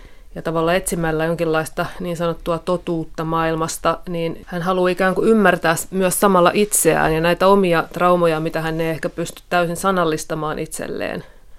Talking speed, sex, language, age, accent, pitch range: 150 wpm, female, Finnish, 30-49, native, 160-180 Hz